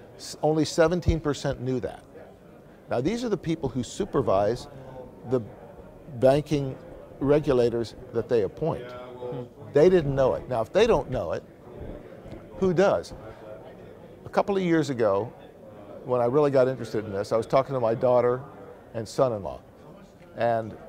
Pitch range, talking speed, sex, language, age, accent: 115-145 Hz, 145 wpm, male, English, 50-69, American